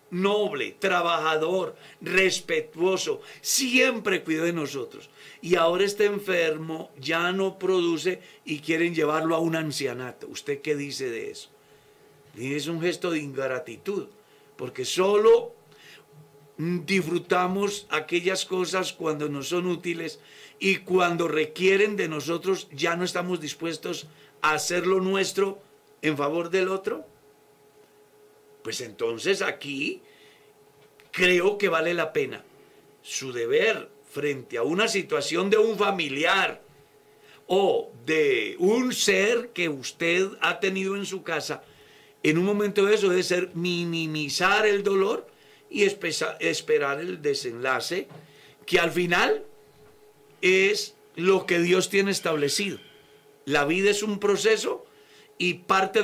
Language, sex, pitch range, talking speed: Spanish, male, 160-210 Hz, 120 wpm